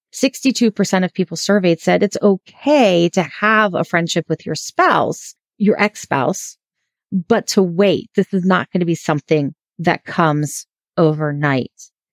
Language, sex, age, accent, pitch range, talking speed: English, female, 30-49, American, 165-210 Hz, 140 wpm